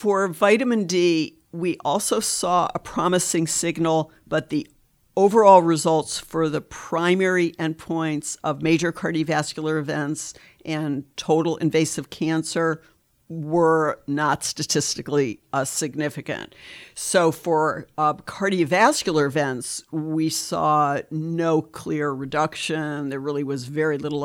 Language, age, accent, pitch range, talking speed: English, 60-79, American, 150-170 Hz, 110 wpm